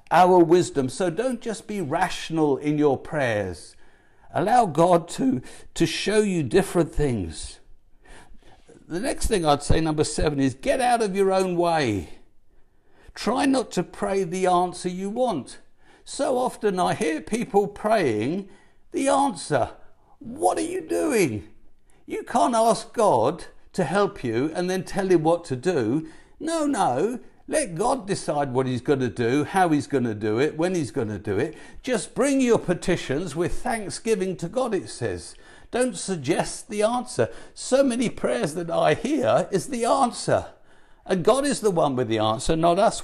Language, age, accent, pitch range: English, 60-79, British, 155-225 Hz